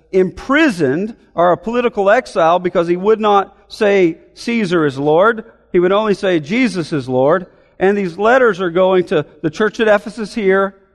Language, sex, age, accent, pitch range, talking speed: English, male, 50-69, American, 165-210 Hz, 170 wpm